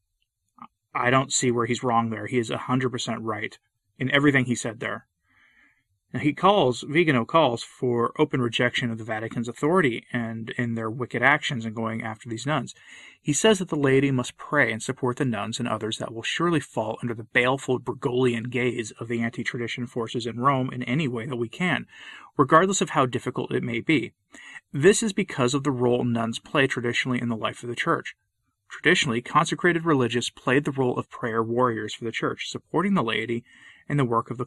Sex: male